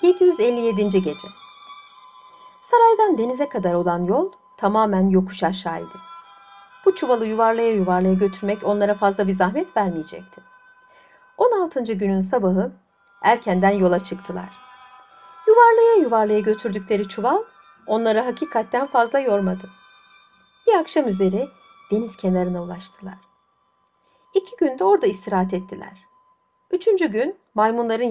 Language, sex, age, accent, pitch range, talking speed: Turkish, female, 60-79, native, 190-275 Hz, 100 wpm